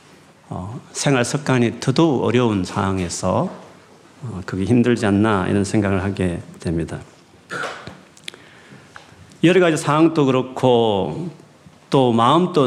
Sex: male